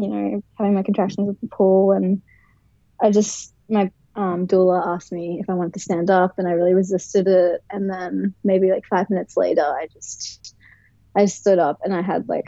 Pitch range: 180-215 Hz